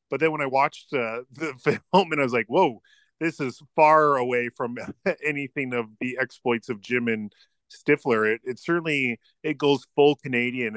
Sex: male